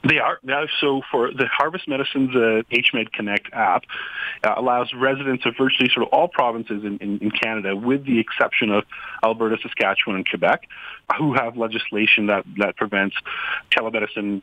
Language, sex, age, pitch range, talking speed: English, male, 30-49, 105-135 Hz, 160 wpm